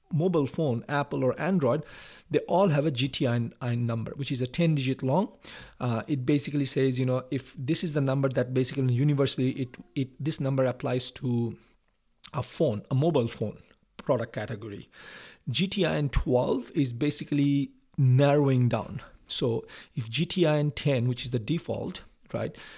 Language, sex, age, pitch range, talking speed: English, male, 50-69, 130-160 Hz, 155 wpm